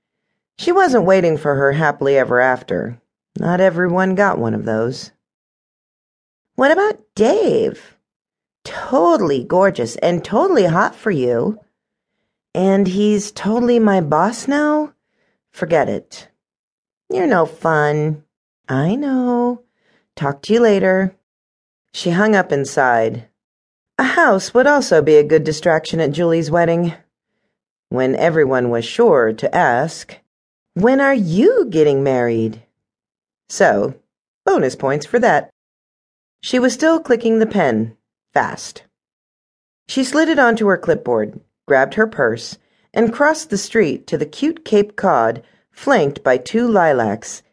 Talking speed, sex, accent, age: 130 wpm, female, American, 40-59